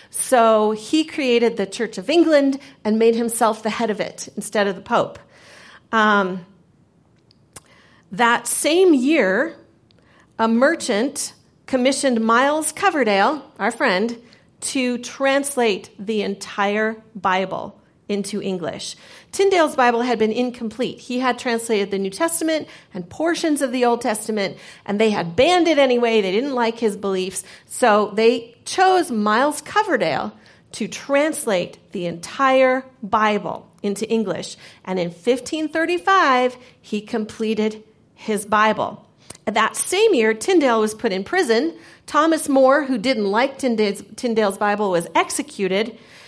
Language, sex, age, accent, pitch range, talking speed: English, female, 40-59, American, 205-260 Hz, 130 wpm